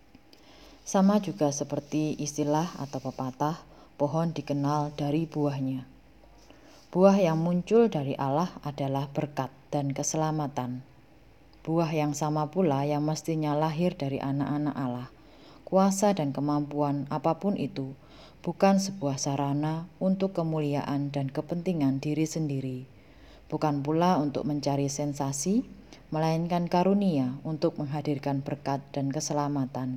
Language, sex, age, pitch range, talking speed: Indonesian, female, 20-39, 140-160 Hz, 110 wpm